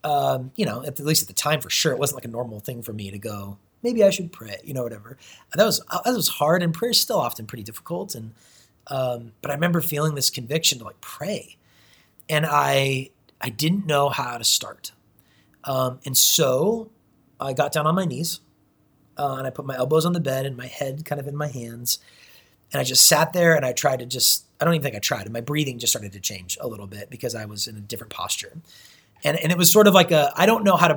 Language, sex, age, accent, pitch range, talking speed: English, male, 30-49, American, 120-155 Hz, 260 wpm